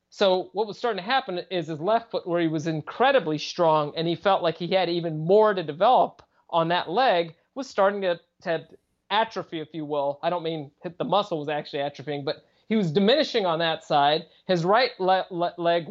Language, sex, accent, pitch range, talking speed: English, male, American, 165-195 Hz, 210 wpm